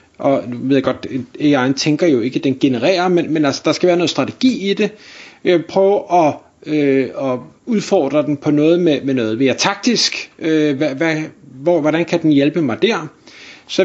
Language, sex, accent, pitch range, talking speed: Danish, male, native, 145-185 Hz, 195 wpm